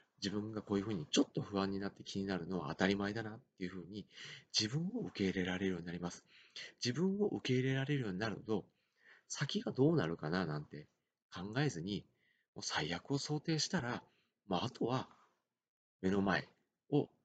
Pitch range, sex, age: 90-135 Hz, male, 40-59